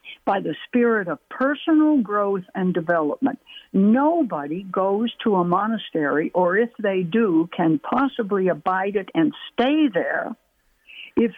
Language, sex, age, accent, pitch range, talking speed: English, female, 60-79, American, 180-230 Hz, 130 wpm